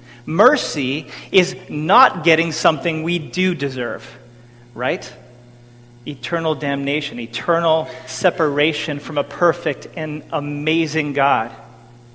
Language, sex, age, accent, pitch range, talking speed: English, male, 40-59, American, 120-170 Hz, 95 wpm